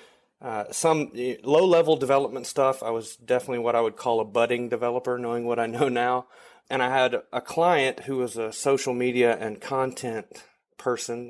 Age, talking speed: 30-49, 180 wpm